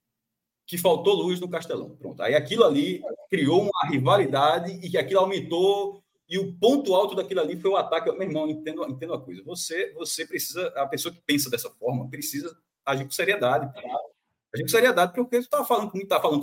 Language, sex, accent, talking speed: Portuguese, male, Brazilian, 200 wpm